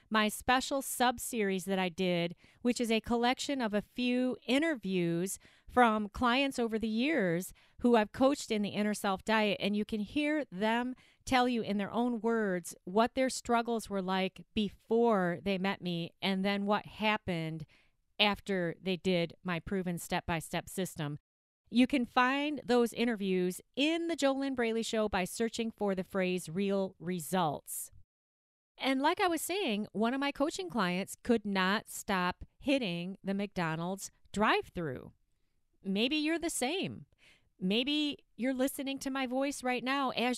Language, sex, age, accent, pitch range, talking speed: English, female, 40-59, American, 190-250 Hz, 155 wpm